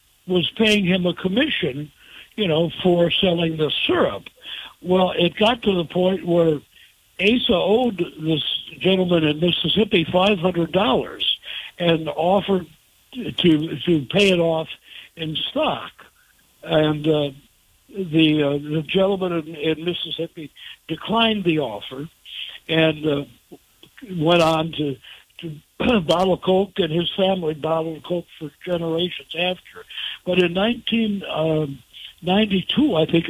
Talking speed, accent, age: 125 wpm, American, 60-79